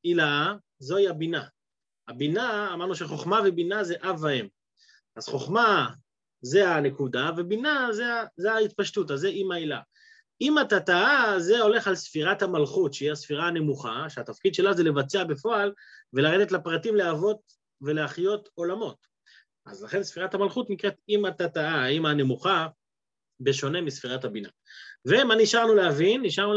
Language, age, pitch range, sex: Hebrew, 30-49, 175-230 Hz, male